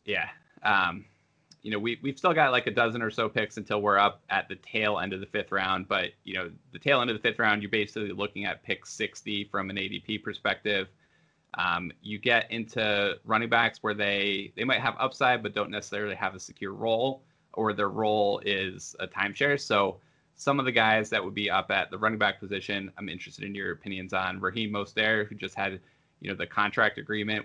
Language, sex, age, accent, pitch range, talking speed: English, male, 20-39, American, 100-115 Hz, 220 wpm